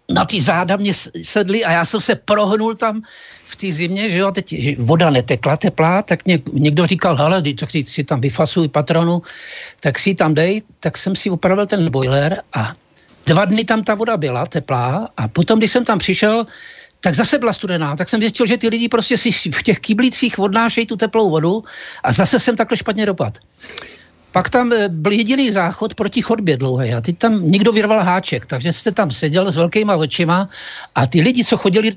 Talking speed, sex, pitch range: 200 wpm, male, 165-220 Hz